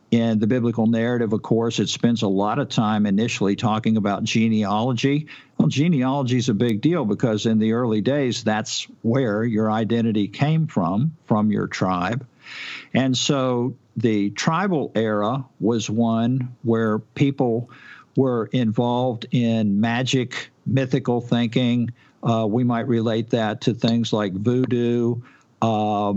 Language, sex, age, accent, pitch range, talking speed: English, male, 50-69, American, 110-130 Hz, 140 wpm